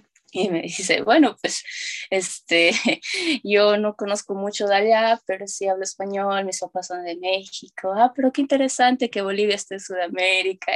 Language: Spanish